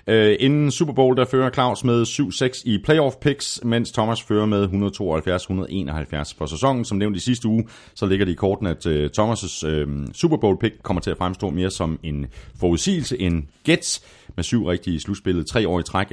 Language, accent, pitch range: Danish, native, 85-125 Hz